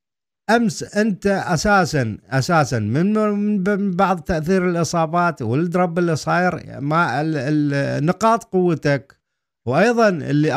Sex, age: male, 50-69